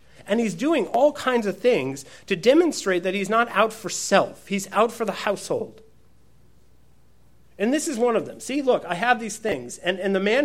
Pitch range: 160-215 Hz